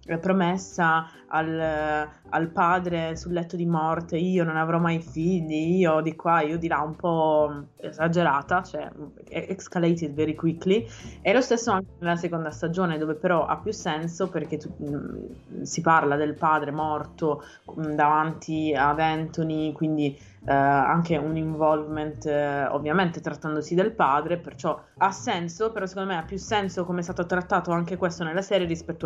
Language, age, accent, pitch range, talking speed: Italian, 20-39, native, 155-180 Hz, 155 wpm